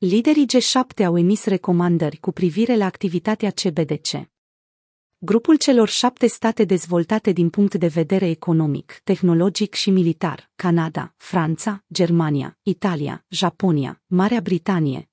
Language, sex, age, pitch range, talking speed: Romanian, female, 30-49, 175-220 Hz, 120 wpm